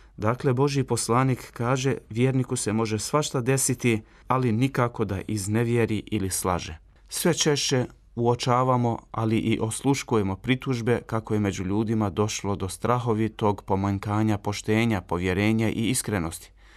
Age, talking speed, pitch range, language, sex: 30-49, 120 wpm, 100-125 Hz, Croatian, male